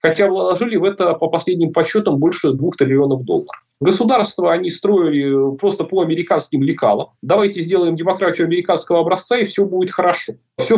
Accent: native